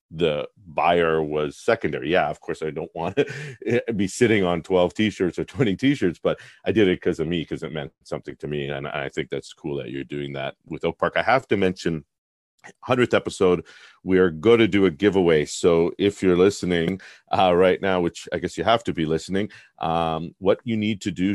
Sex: male